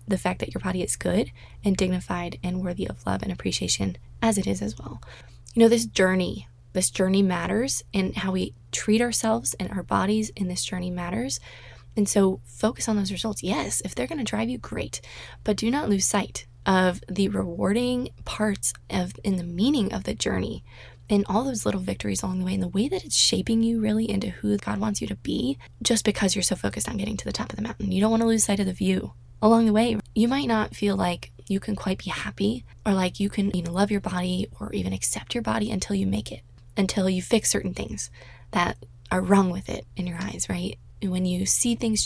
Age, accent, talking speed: 20-39, American, 235 wpm